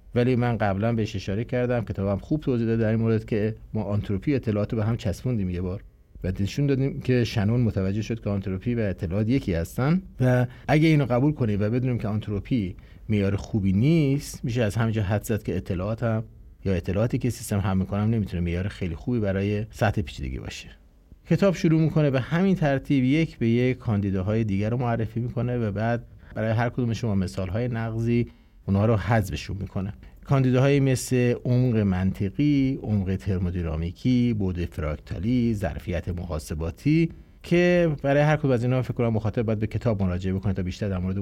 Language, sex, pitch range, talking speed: Persian, male, 95-125 Hz, 170 wpm